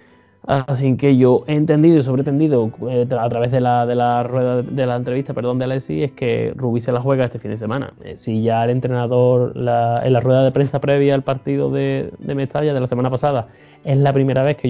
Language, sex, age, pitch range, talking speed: Spanish, male, 20-39, 120-135 Hz, 230 wpm